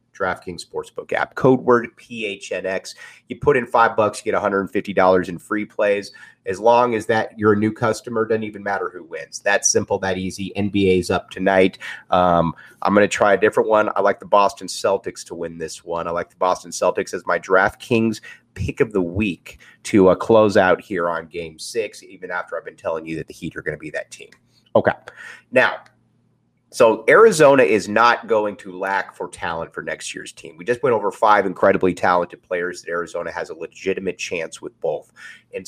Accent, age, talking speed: American, 30-49, 210 wpm